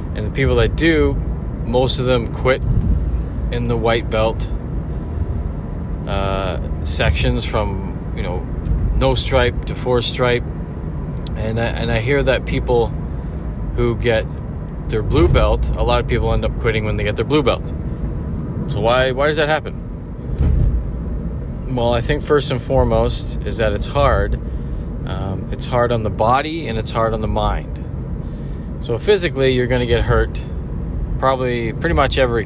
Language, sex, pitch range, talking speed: English, male, 80-125 Hz, 160 wpm